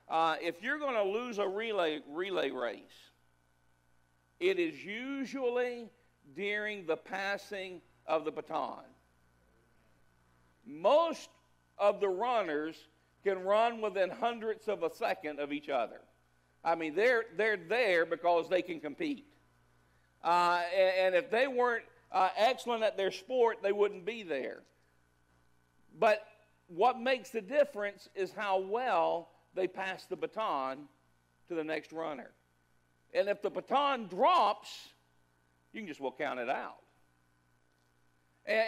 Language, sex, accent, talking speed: English, male, American, 135 wpm